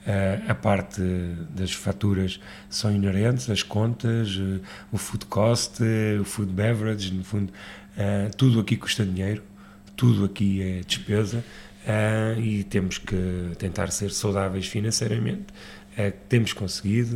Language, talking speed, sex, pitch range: Portuguese, 135 wpm, male, 95-105 Hz